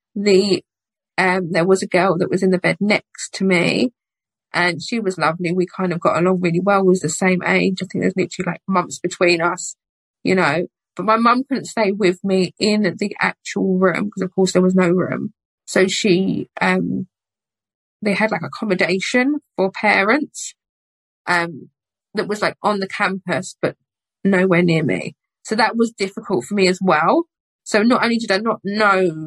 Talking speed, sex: 190 wpm, female